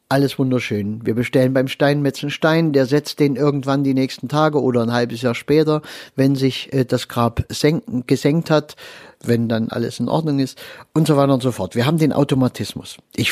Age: 50-69